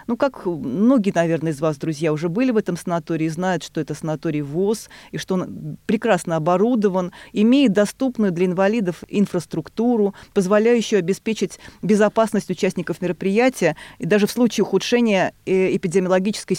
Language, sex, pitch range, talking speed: Russian, female, 175-225 Hz, 140 wpm